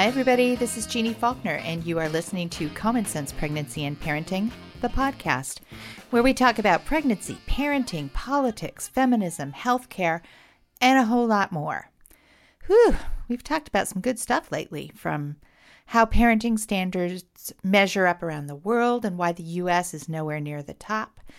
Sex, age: female, 40-59